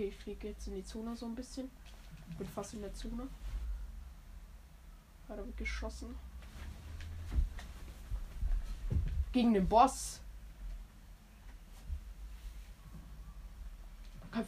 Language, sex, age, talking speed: German, female, 20-39, 85 wpm